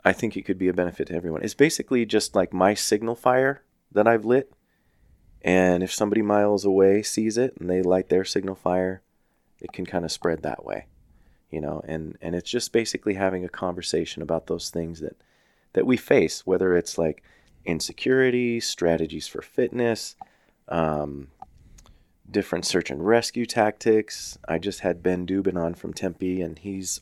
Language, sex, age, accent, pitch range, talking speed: English, male, 30-49, American, 85-110 Hz, 175 wpm